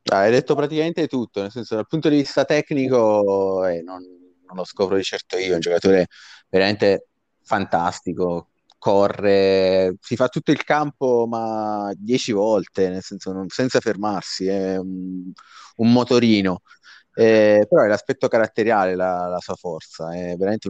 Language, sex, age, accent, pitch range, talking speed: Italian, male, 30-49, native, 90-110 Hz, 155 wpm